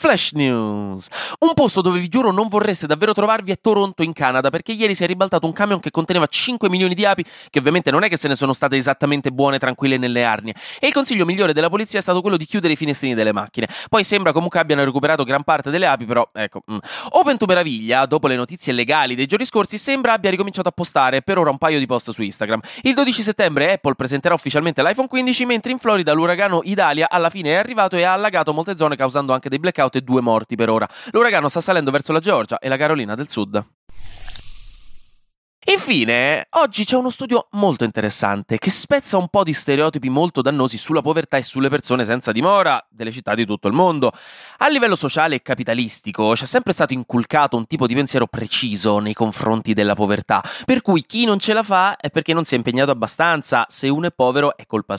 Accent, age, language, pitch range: native, 20-39, Italian, 120-190 Hz